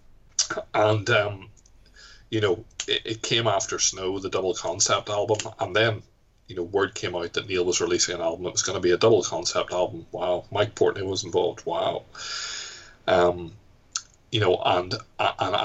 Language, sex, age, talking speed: English, male, 30-49, 175 wpm